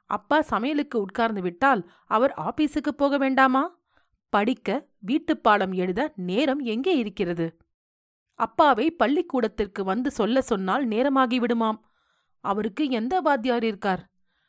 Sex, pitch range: female, 190-270 Hz